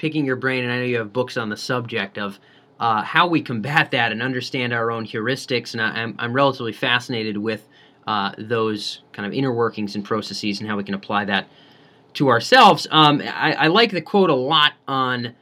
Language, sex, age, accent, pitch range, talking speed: English, male, 30-49, American, 120-155 Hz, 215 wpm